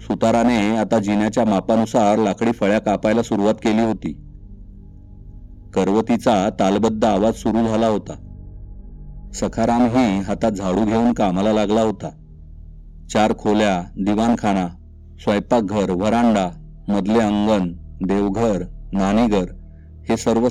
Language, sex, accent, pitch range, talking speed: Marathi, male, native, 85-115 Hz, 70 wpm